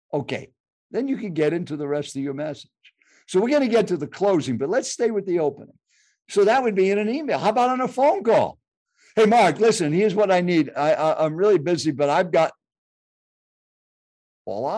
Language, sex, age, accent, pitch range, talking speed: English, male, 60-79, American, 150-215 Hz, 210 wpm